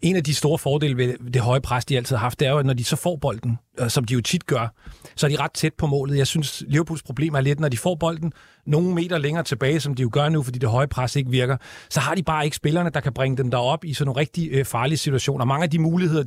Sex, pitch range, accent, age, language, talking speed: male, 130-155 Hz, native, 40-59, Danish, 300 wpm